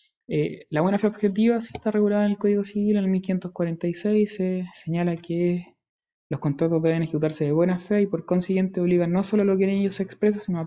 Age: 20-39